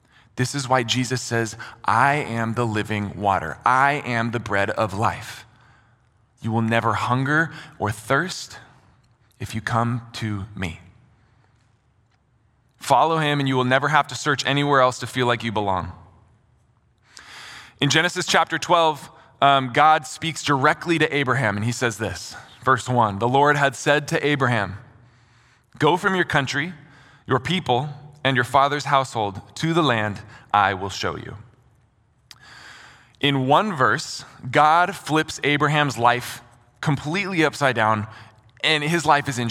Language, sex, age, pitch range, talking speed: English, male, 20-39, 115-150 Hz, 145 wpm